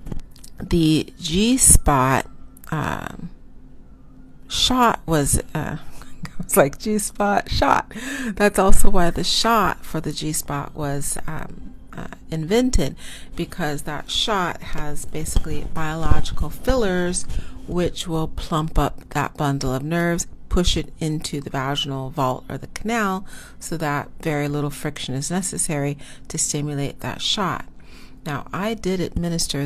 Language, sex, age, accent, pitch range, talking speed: English, female, 40-59, American, 140-180 Hz, 125 wpm